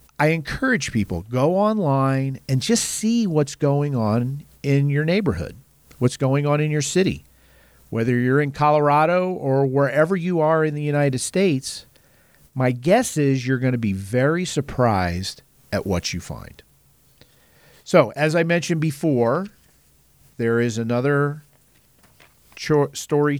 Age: 50-69